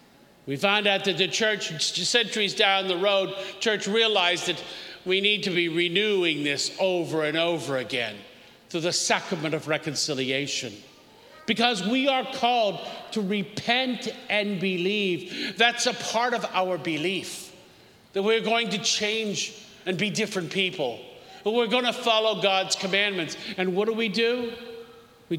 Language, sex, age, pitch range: English, male, 50-69, 170-225 Hz